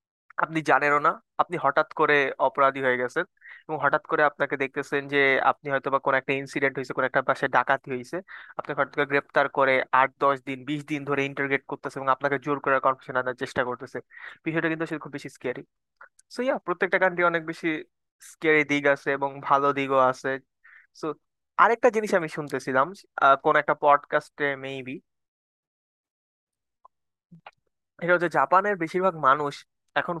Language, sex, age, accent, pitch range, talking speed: Bengali, male, 20-39, native, 135-160 Hz, 75 wpm